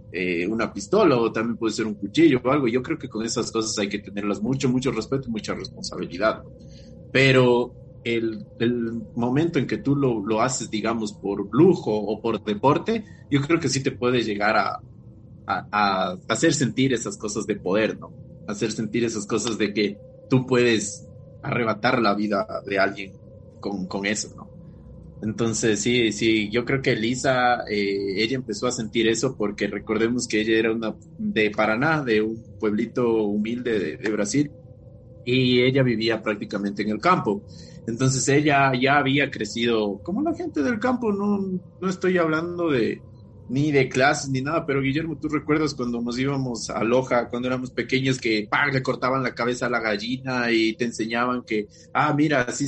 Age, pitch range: 30-49, 110-135 Hz